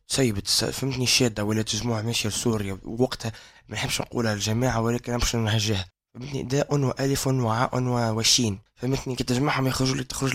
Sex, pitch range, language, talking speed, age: male, 105-130 Hz, Arabic, 150 wpm, 20-39